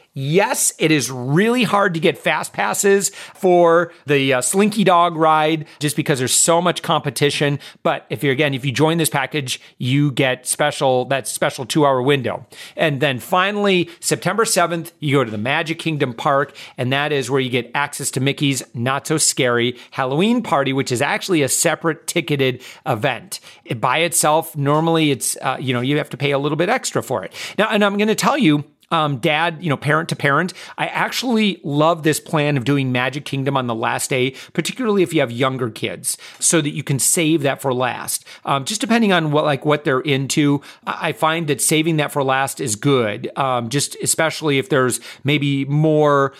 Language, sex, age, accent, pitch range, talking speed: English, male, 40-59, American, 135-165 Hz, 195 wpm